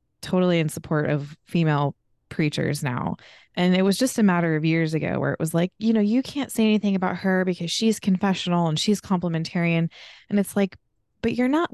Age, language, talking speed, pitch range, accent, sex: 20-39, English, 205 wpm, 165-220 Hz, American, female